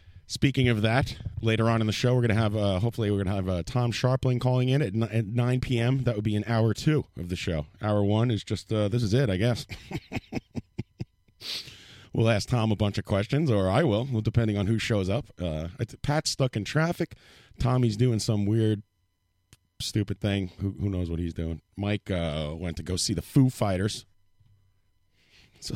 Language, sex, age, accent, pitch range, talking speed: English, male, 30-49, American, 90-115 Hz, 200 wpm